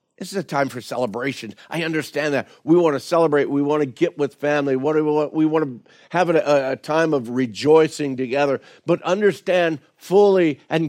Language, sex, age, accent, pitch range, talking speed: English, male, 50-69, American, 125-165 Hz, 170 wpm